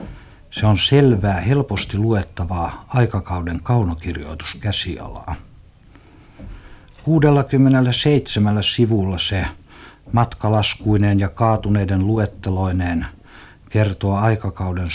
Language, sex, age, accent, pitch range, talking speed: Finnish, male, 60-79, native, 90-115 Hz, 65 wpm